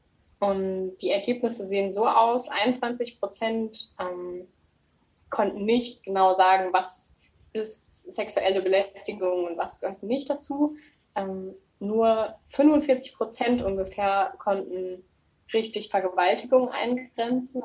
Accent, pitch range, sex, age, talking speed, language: German, 185-220 Hz, female, 10-29, 105 wpm, English